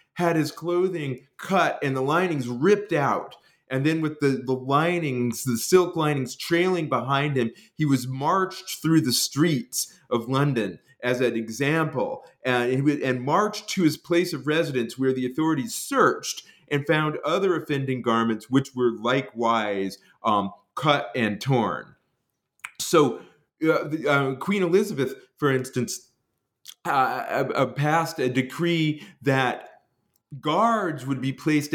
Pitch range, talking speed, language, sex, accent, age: 125-160 Hz, 145 wpm, English, male, American, 30-49